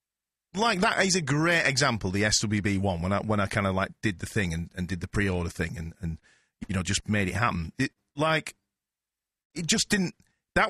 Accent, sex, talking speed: British, male, 220 wpm